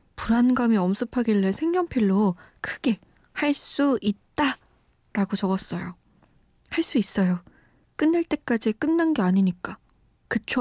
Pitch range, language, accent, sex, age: 195-260 Hz, Korean, native, female, 20-39